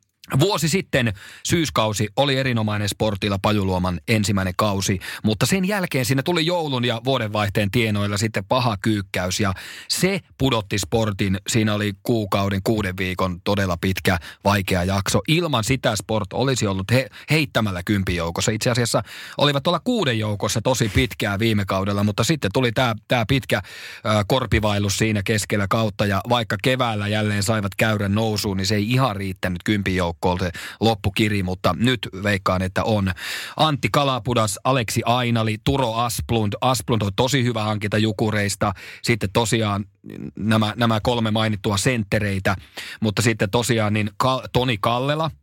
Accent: native